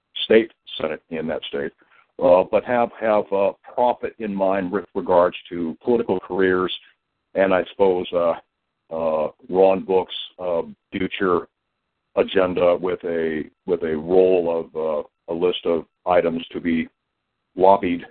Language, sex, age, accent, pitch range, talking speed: English, male, 60-79, American, 85-105 Hz, 140 wpm